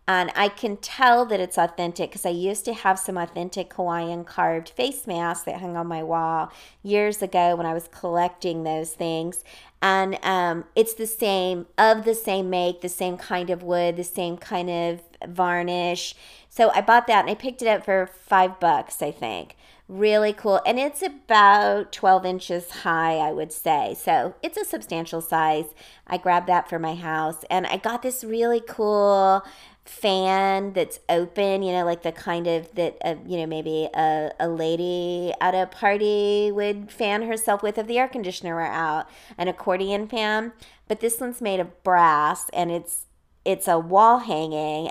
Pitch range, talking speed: 170-210 Hz, 185 wpm